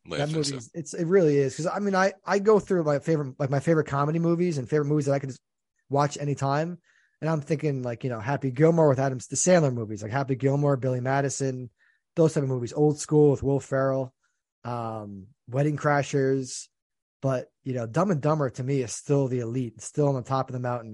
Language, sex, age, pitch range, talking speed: English, male, 20-39, 125-155 Hz, 225 wpm